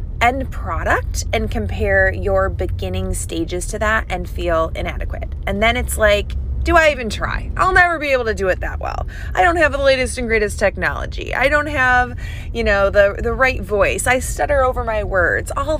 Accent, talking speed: American, 200 wpm